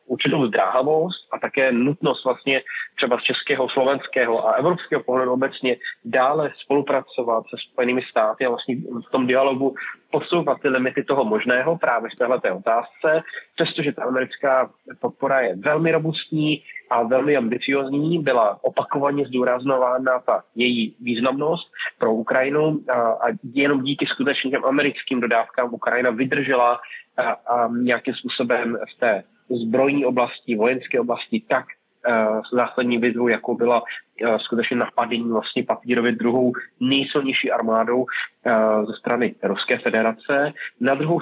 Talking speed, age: 130 wpm, 30-49